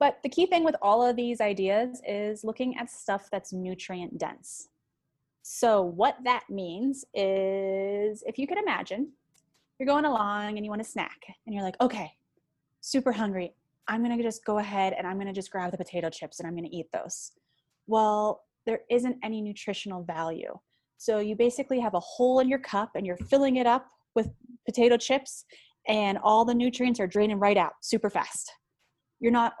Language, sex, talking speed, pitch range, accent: English, female, 195 wpm, 185-235 Hz, American